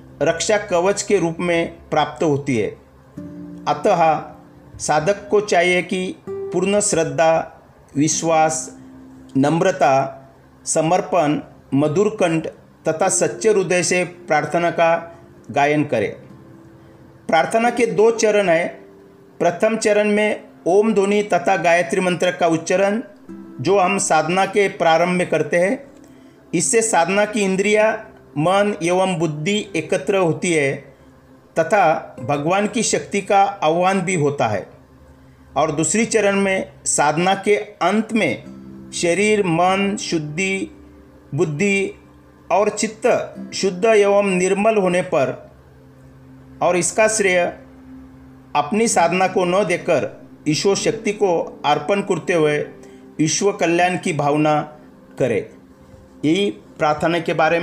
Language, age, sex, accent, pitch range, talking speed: Hindi, 50-69, male, native, 145-200 Hz, 115 wpm